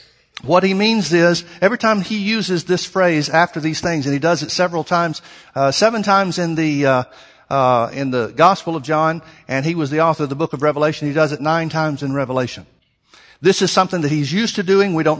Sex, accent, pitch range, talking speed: male, American, 150-180 Hz, 230 wpm